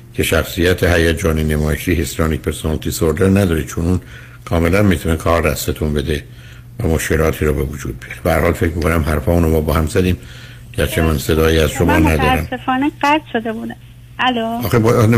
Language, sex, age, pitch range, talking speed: Persian, male, 60-79, 85-110 Hz, 165 wpm